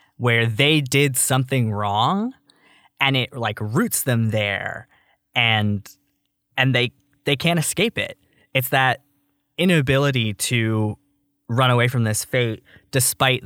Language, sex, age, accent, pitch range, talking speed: English, male, 20-39, American, 110-130 Hz, 125 wpm